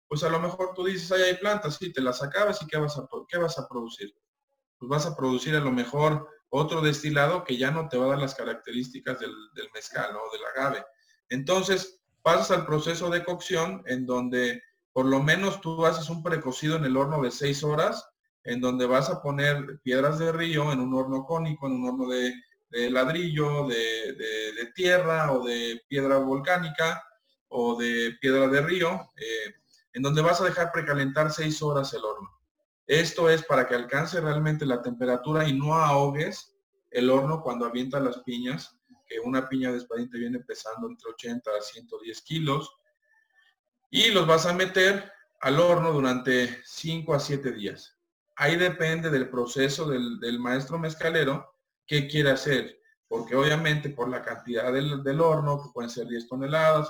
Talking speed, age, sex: 180 wpm, 40-59, male